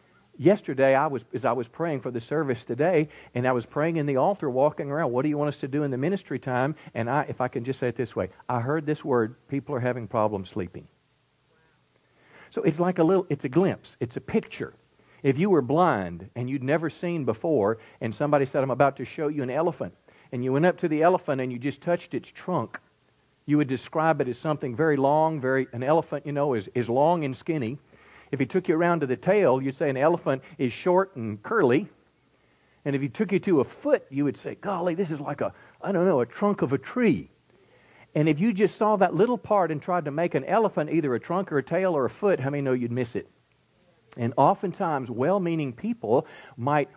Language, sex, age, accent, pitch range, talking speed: English, male, 50-69, American, 125-170 Hz, 235 wpm